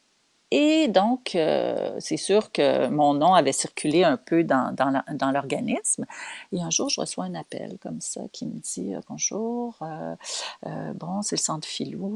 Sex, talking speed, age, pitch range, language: female, 190 wpm, 40-59, 155-220 Hz, French